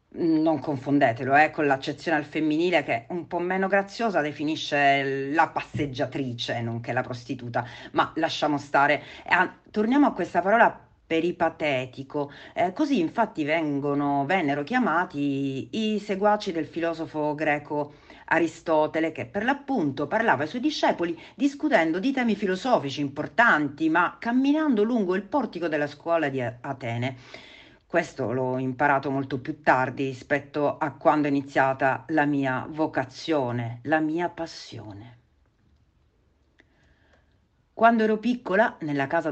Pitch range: 135-195 Hz